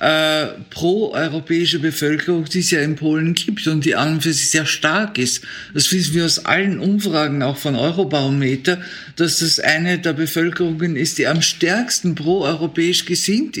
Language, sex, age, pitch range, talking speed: German, male, 60-79, 155-185 Hz, 150 wpm